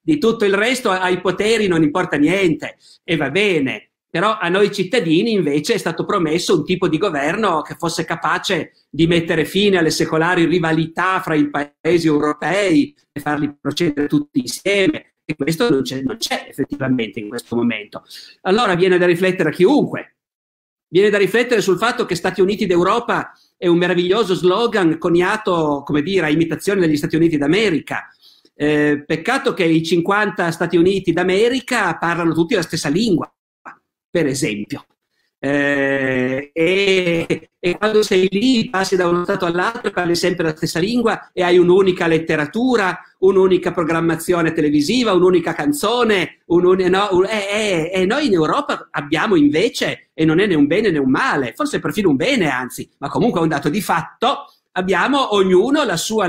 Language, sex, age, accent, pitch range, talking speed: Italian, male, 50-69, native, 160-200 Hz, 165 wpm